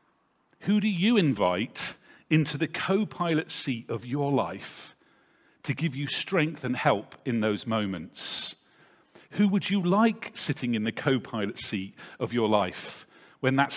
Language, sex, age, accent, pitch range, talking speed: English, male, 40-59, British, 140-200 Hz, 150 wpm